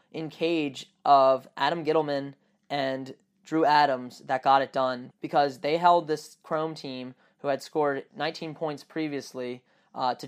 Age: 10-29